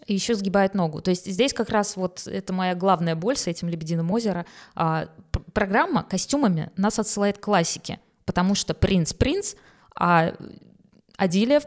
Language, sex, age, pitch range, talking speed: Russian, female, 20-39, 175-225 Hz, 170 wpm